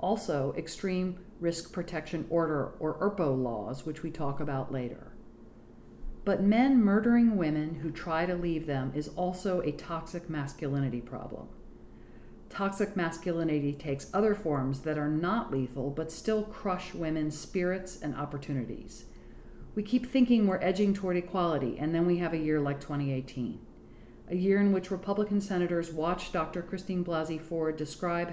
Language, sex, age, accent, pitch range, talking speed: English, female, 50-69, American, 150-195 Hz, 150 wpm